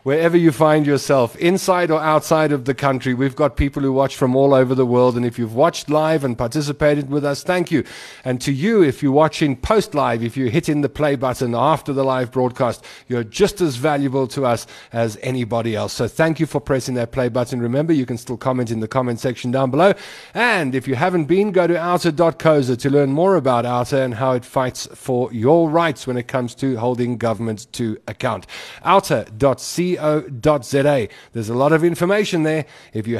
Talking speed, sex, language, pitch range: 210 wpm, male, English, 120-150 Hz